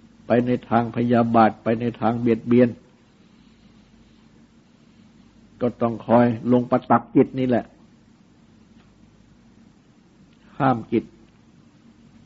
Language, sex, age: Thai, male, 60-79